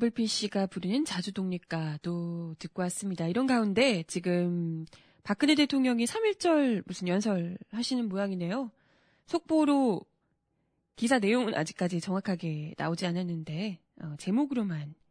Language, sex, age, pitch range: Korean, female, 20-39, 180-245 Hz